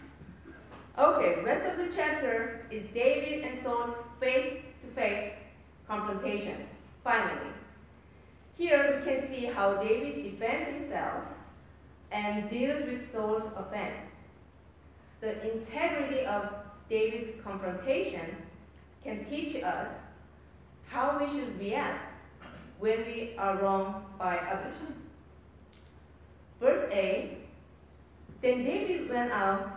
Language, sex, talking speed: English, female, 100 wpm